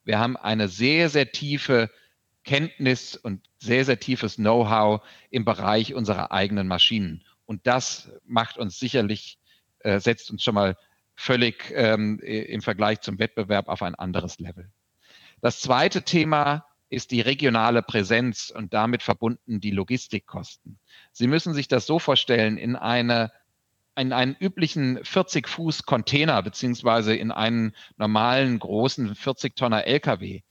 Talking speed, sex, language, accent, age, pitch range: 130 wpm, male, German, German, 40-59, 105-130 Hz